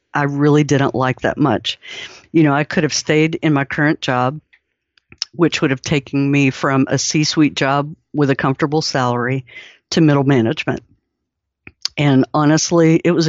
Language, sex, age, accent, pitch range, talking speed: English, female, 50-69, American, 135-160 Hz, 165 wpm